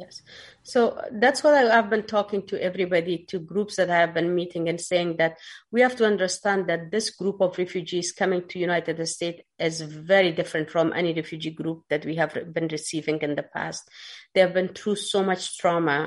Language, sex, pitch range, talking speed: English, female, 165-195 Hz, 200 wpm